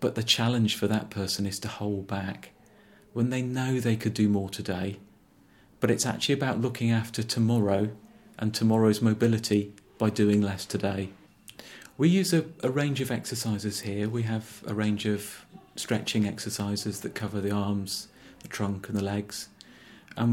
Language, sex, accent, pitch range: English, male, British, 105-120 Hz